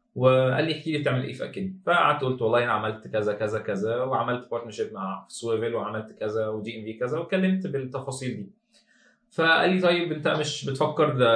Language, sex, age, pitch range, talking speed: Arabic, male, 20-39, 110-155 Hz, 180 wpm